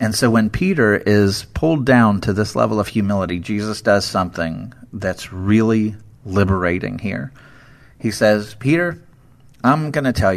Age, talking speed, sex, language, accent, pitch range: 40-59, 150 wpm, male, English, American, 105-130 Hz